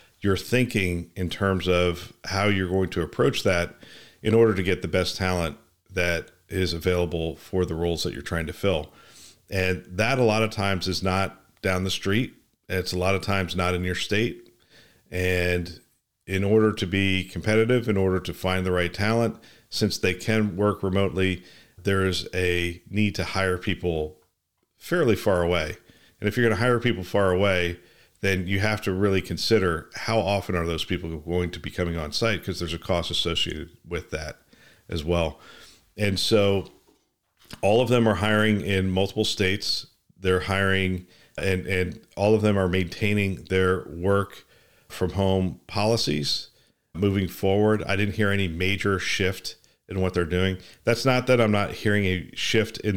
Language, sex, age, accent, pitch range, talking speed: English, male, 40-59, American, 90-105 Hz, 180 wpm